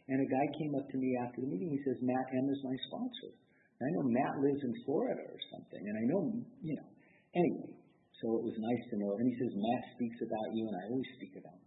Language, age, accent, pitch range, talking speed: English, 50-69, American, 95-125 Hz, 255 wpm